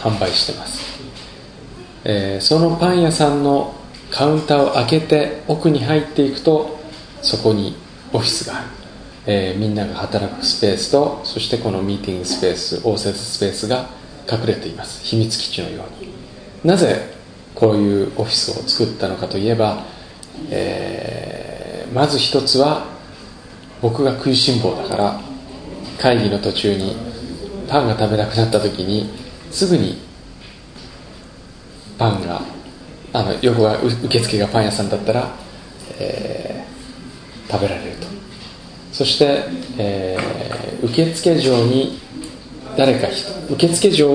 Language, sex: Japanese, male